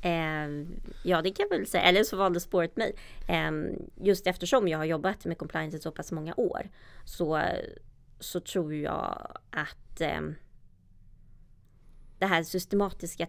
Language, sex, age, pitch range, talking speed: Swedish, female, 20-39, 150-180 Hz, 155 wpm